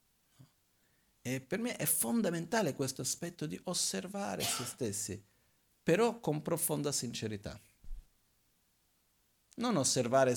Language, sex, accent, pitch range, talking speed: Italian, male, native, 105-135 Hz, 100 wpm